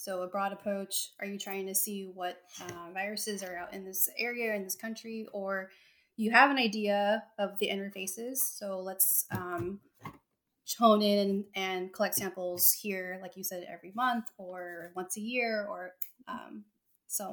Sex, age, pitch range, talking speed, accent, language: female, 20-39, 195-230 Hz, 170 wpm, American, English